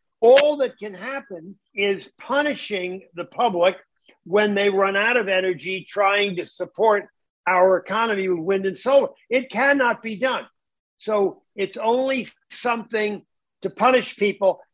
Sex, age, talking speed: male, 50-69, 140 wpm